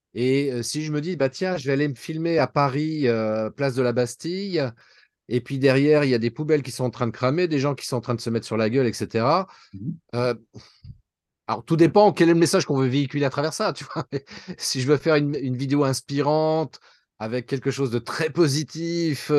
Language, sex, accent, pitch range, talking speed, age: French, male, French, 120-150 Hz, 240 wpm, 30-49